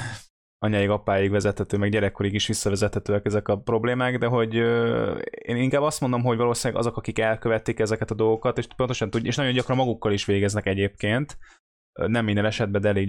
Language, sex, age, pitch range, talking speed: Hungarian, male, 20-39, 105-125 Hz, 175 wpm